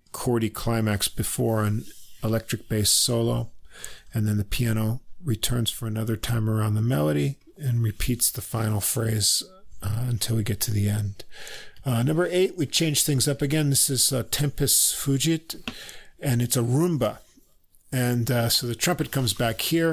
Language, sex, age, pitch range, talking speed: English, male, 50-69, 110-130 Hz, 165 wpm